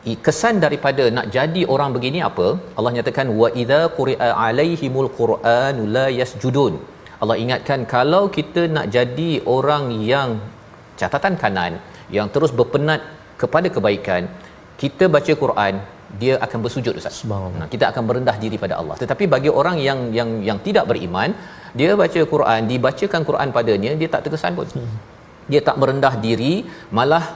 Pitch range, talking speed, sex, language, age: 110-140 Hz, 150 wpm, male, Malayalam, 40-59